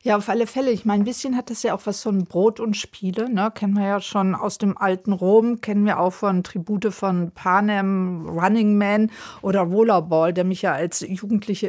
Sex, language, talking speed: female, English, 210 wpm